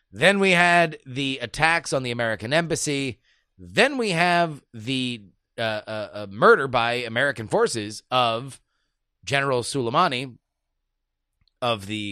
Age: 30-49